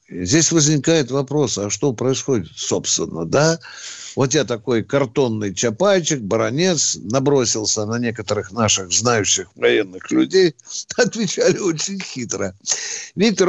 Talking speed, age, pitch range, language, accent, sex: 110 wpm, 60-79, 120-185 Hz, Russian, native, male